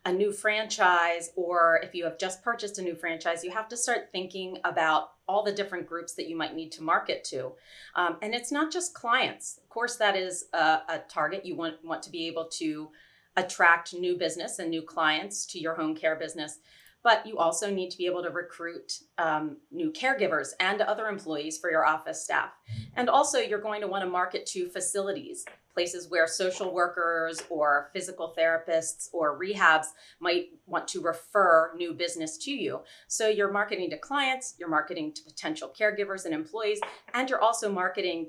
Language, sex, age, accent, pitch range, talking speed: English, female, 30-49, American, 160-205 Hz, 190 wpm